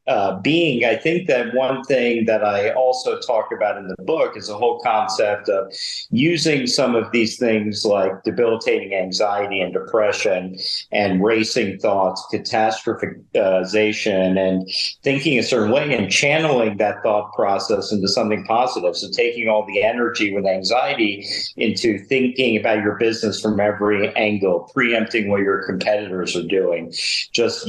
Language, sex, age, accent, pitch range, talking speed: English, male, 50-69, American, 100-125 Hz, 150 wpm